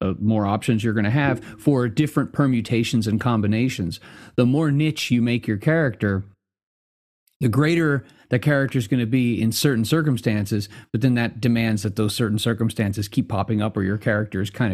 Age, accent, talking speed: 30-49, American, 185 wpm